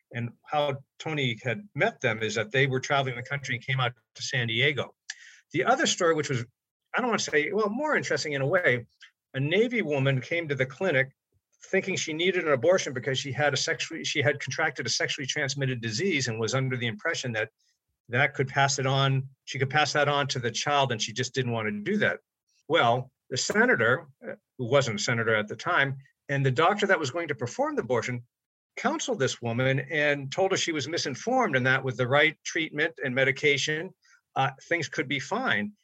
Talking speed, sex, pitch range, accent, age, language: 215 wpm, male, 125-155 Hz, American, 50-69, English